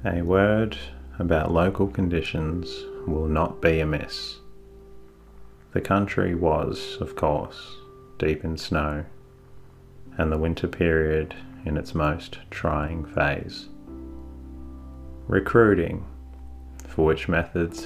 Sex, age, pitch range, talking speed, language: male, 30-49, 80-90 Hz, 100 wpm, English